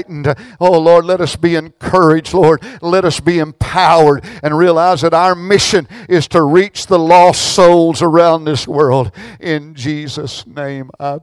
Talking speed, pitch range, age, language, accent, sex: 155 wpm, 130-165 Hz, 60-79, English, American, male